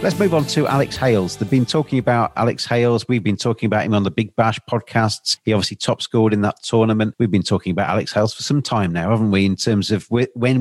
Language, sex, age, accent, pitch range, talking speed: English, male, 40-59, British, 105-125 Hz, 255 wpm